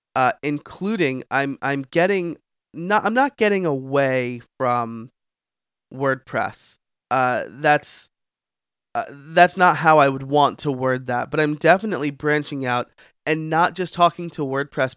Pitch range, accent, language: 130-170 Hz, American, English